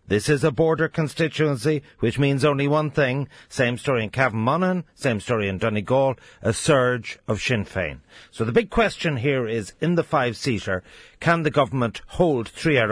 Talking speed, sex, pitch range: 175 wpm, male, 110-150 Hz